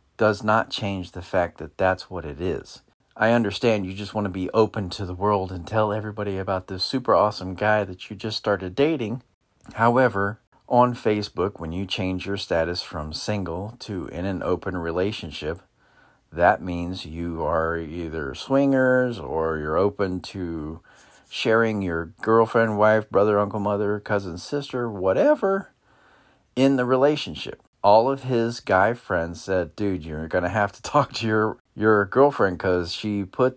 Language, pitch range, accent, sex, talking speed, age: English, 95-125 Hz, American, male, 165 wpm, 40-59